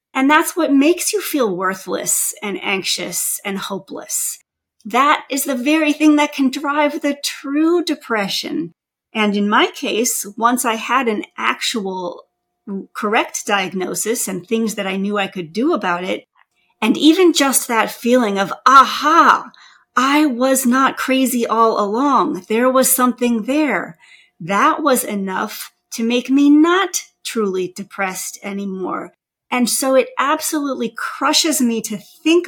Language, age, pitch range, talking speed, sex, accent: English, 40-59, 205-285 Hz, 145 wpm, female, American